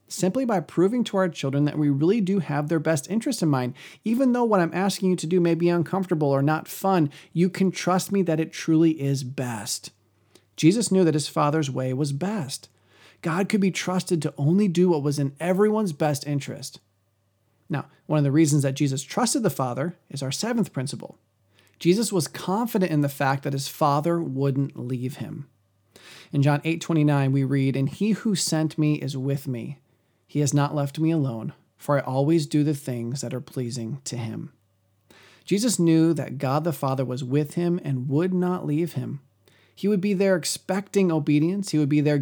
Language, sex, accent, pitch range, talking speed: English, male, American, 135-175 Hz, 200 wpm